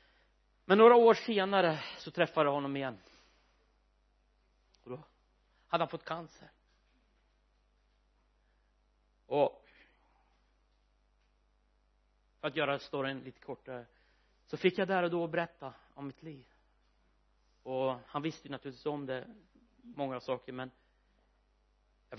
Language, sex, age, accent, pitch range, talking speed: Swedish, male, 40-59, native, 130-175 Hz, 115 wpm